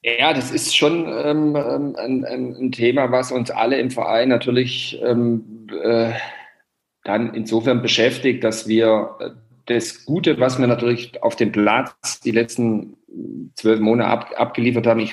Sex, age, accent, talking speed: male, 40-59, German, 145 wpm